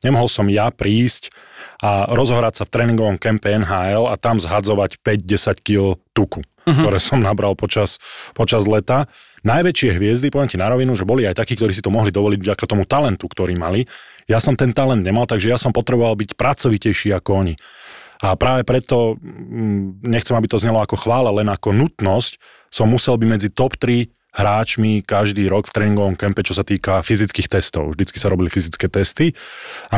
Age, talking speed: 20-39, 180 wpm